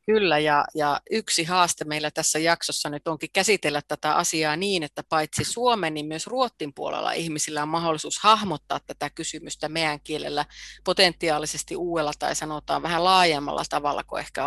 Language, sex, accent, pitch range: Finnish, female, native, 155-190 Hz